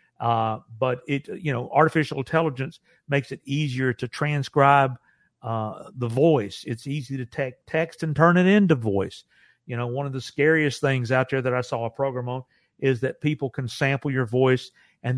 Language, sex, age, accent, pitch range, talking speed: English, male, 50-69, American, 125-145 Hz, 190 wpm